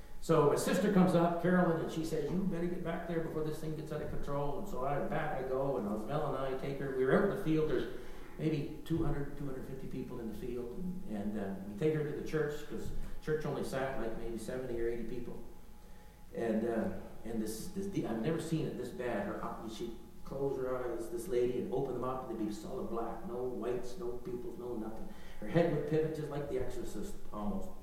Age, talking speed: 60-79, 235 wpm